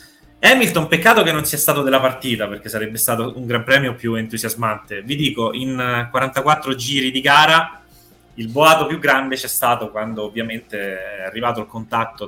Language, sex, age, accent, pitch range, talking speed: Italian, male, 20-39, native, 105-130 Hz, 170 wpm